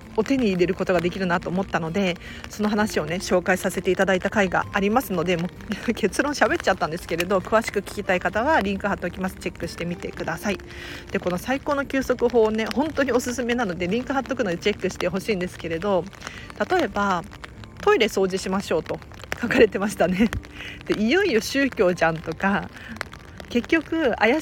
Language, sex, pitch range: Japanese, female, 185-260 Hz